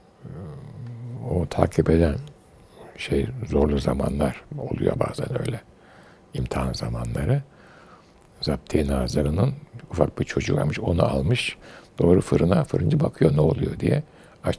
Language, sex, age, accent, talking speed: Turkish, male, 60-79, native, 105 wpm